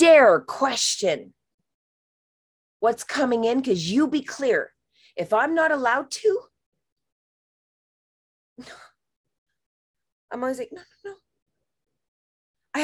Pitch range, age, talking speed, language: 220-370 Hz, 30-49, 100 wpm, English